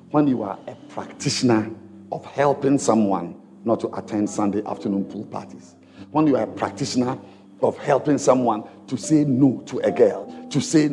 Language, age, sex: English, 50-69, male